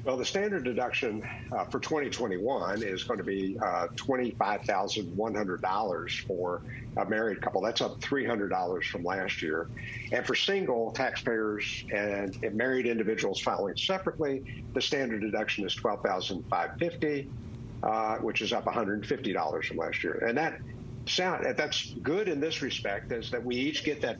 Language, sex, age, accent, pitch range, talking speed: English, male, 50-69, American, 110-130 Hz, 145 wpm